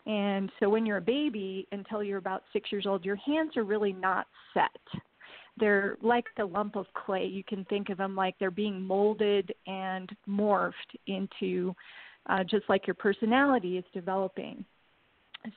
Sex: female